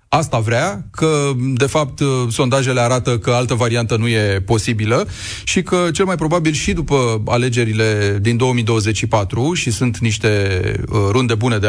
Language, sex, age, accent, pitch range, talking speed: Romanian, male, 30-49, native, 110-135 Hz, 155 wpm